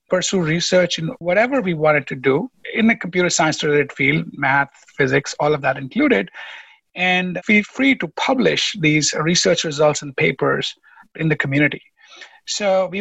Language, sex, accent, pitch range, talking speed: English, male, Indian, 145-180 Hz, 155 wpm